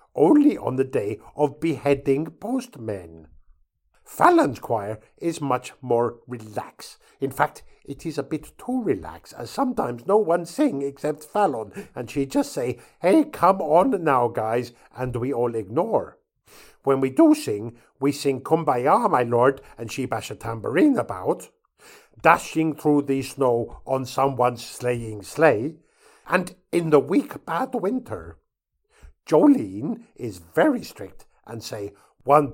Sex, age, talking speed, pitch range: male, 50-69, 140 wpm, 115-165 Hz